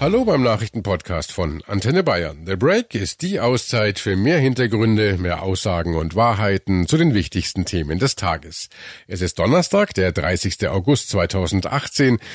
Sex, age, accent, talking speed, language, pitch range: male, 50-69, German, 150 wpm, German, 95-145 Hz